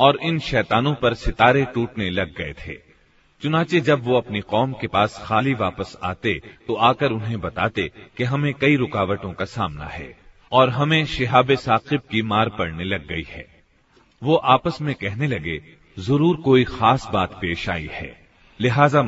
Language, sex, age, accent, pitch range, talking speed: Hindi, male, 40-59, native, 100-135 Hz, 165 wpm